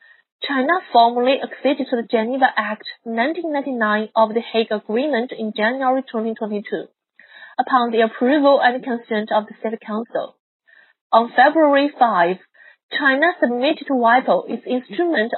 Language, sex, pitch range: Chinese, female, 230-285 Hz